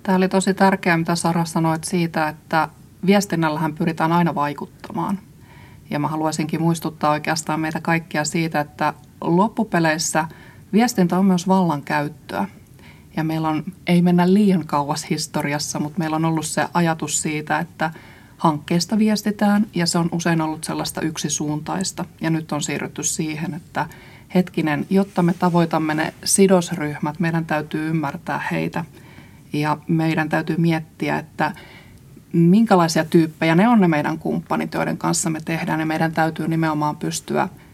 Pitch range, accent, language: 155-180 Hz, native, Finnish